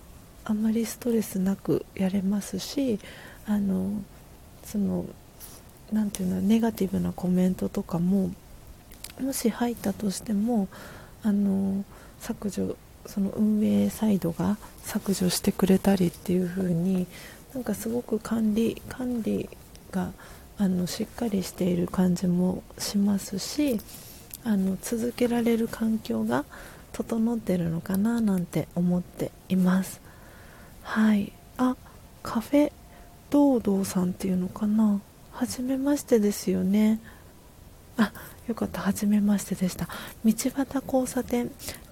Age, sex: 40-59, female